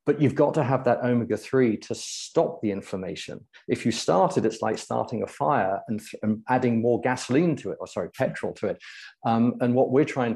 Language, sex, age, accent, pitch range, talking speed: English, male, 40-59, British, 105-125 Hz, 210 wpm